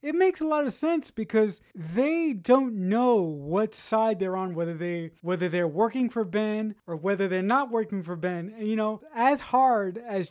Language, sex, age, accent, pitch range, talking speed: English, male, 20-39, American, 175-215 Hz, 200 wpm